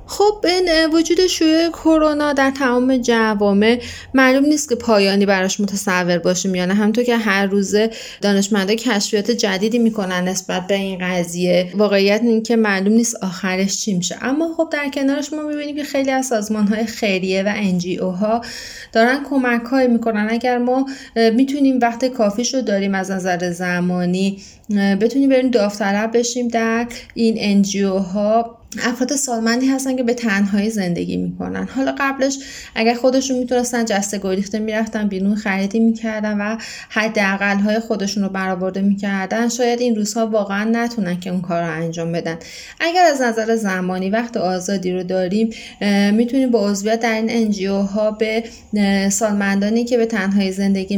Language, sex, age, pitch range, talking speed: Persian, female, 20-39, 195-240 Hz, 155 wpm